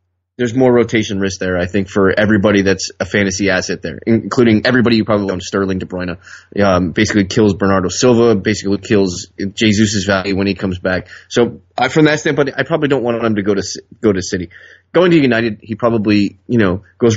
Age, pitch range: 20-39, 95-120 Hz